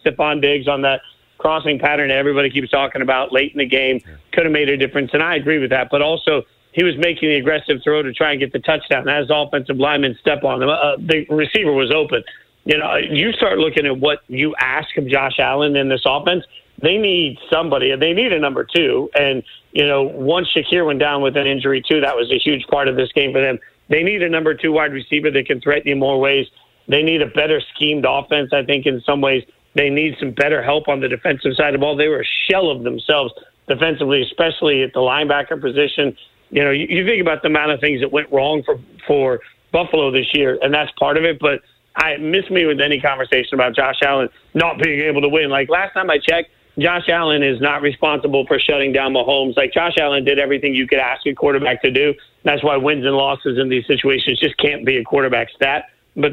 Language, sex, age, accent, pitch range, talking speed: English, male, 40-59, American, 135-155 Hz, 235 wpm